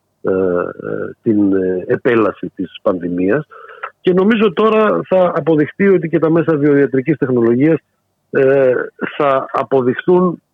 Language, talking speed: Greek, 100 wpm